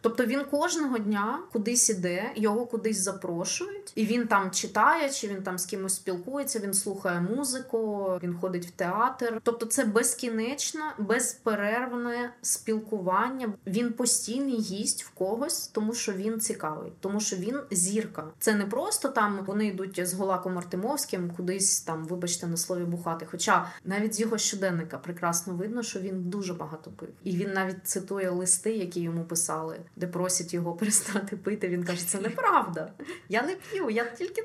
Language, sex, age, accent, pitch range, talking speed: Ukrainian, female, 20-39, native, 180-235 Hz, 160 wpm